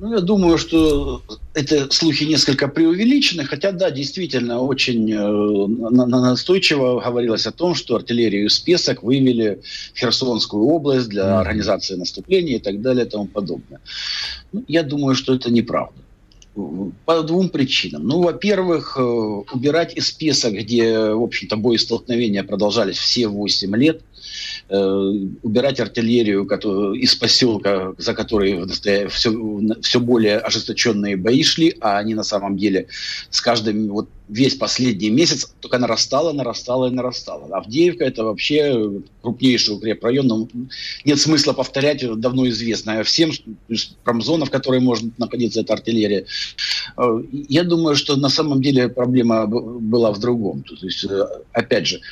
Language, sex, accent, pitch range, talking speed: Russian, male, native, 110-140 Hz, 130 wpm